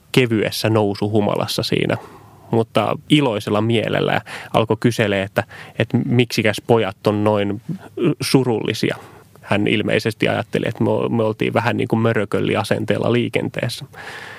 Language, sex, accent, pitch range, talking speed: Finnish, male, native, 105-125 Hz, 105 wpm